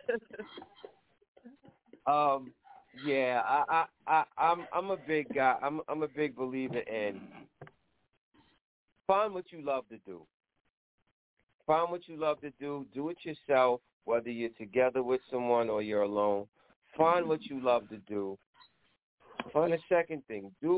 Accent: American